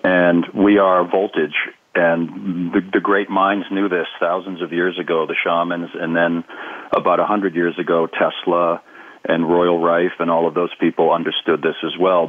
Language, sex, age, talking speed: English, male, 40-59, 180 wpm